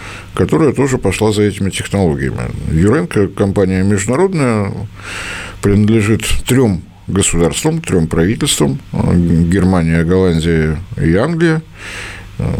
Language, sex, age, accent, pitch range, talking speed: Russian, male, 50-69, native, 90-110 Hz, 85 wpm